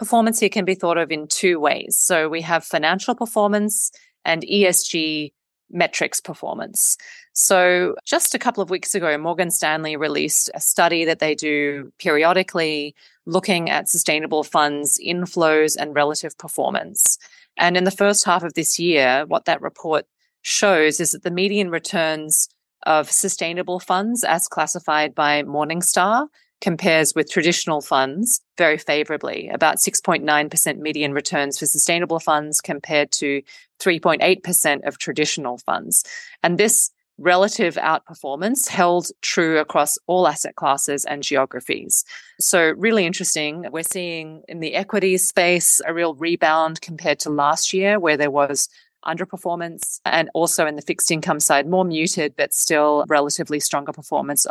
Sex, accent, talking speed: female, Australian, 145 wpm